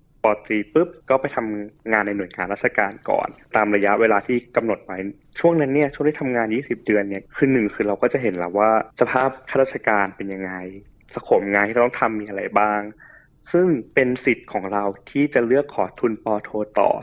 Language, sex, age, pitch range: Thai, male, 20-39, 105-125 Hz